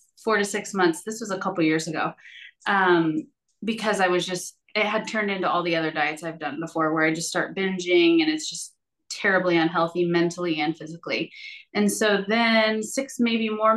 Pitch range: 180-225 Hz